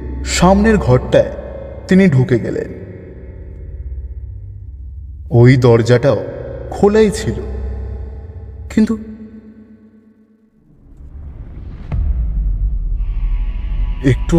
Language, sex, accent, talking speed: Bengali, male, native, 45 wpm